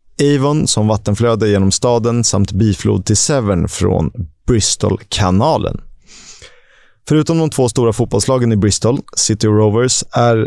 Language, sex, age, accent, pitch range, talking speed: Swedish, male, 30-49, native, 100-130 Hz, 120 wpm